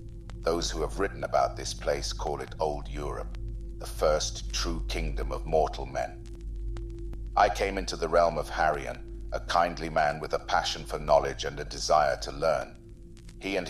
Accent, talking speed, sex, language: British, 175 wpm, male, English